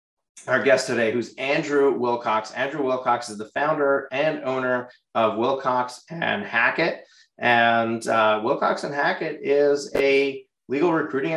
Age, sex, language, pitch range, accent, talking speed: 30-49, male, English, 115-140 Hz, American, 135 wpm